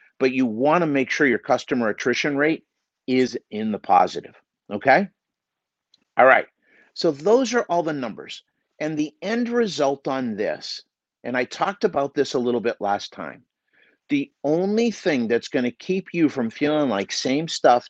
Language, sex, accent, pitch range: English, male, American, 120-170 Hz